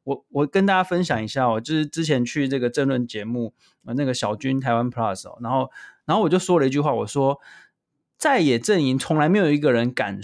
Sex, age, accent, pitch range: male, 20-39, native, 130-190 Hz